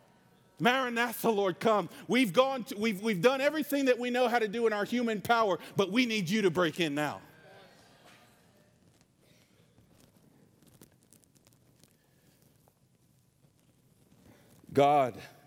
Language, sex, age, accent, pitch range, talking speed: English, male, 50-69, American, 160-215 Hz, 115 wpm